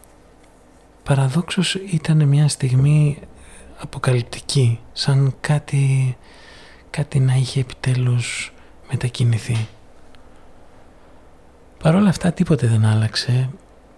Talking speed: 75 wpm